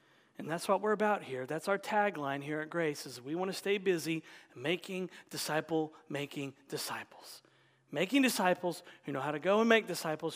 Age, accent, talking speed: 40-59, American, 185 wpm